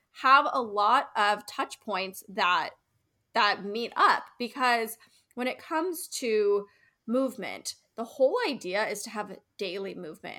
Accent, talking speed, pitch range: American, 140 wpm, 200-260 Hz